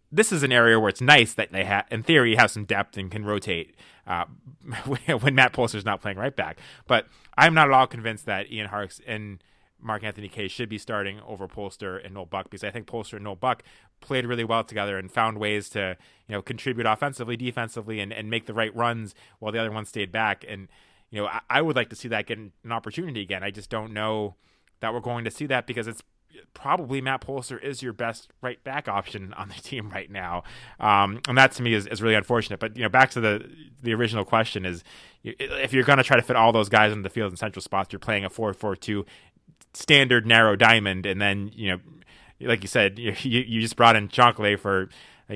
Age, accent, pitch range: 30-49, American, 100-120 Hz